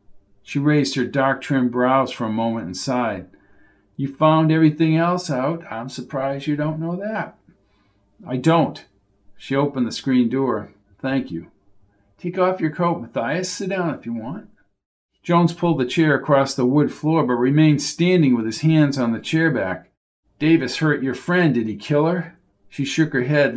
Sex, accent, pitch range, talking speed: male, American, 125-170 Hz, 180 wpm